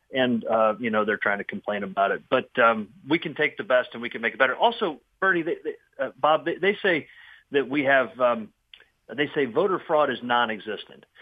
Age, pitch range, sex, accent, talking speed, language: 40-59, 120-170 Hz, male, American, 215 wpm, English